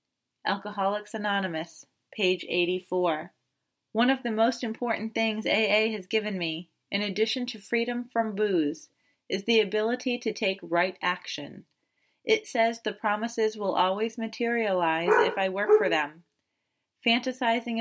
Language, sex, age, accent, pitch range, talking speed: English, female, 30-49, American, 180-225 Hz, 135 wpm